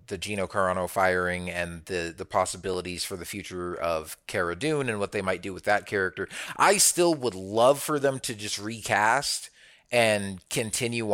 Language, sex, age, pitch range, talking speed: English, male, 30-49, 95-115 Hz, 180 wpm